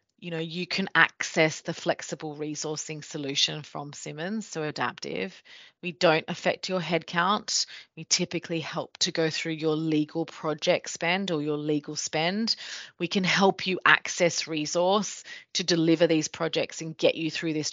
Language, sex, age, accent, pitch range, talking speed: English, female, 30-49, Australian, 150-180 Hz, 160 wpm